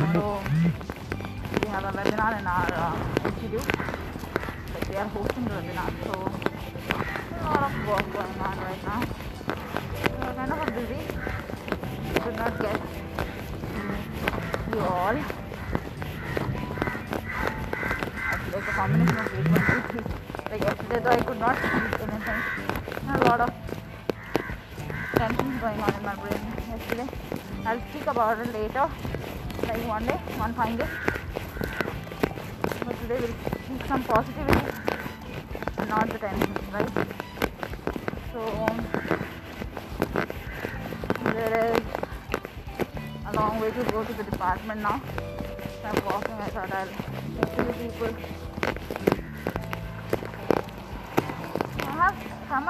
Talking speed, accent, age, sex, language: 125 wpm, Indian, 20-39, female, English